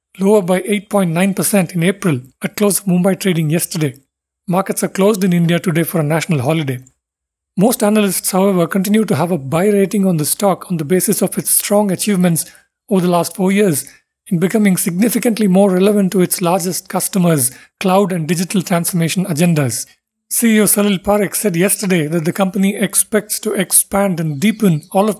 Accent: Indian